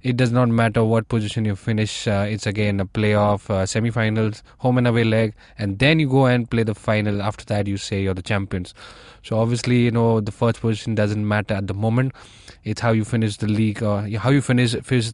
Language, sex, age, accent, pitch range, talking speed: English, male, 20-39, Indian, 105-130 Hz, 235 wpm